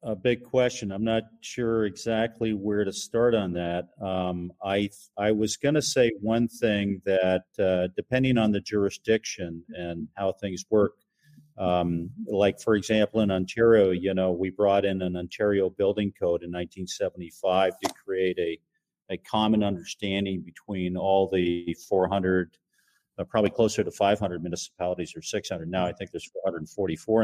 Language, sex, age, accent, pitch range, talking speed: English, male, 40-59, American, 95-110 Hz, 155 wpm